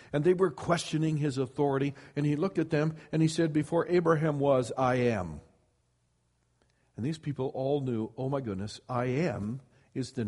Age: 60-79